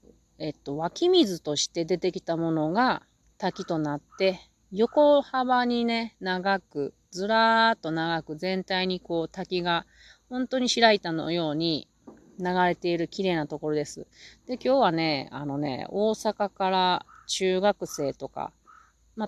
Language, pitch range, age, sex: Japanese, 160-220 Hz, 30-49, female